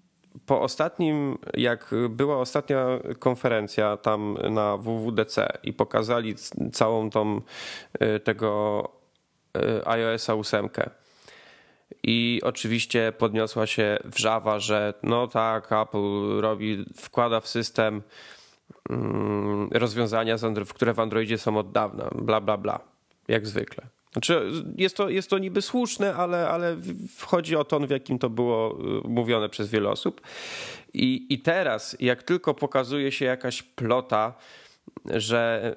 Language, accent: Polish, native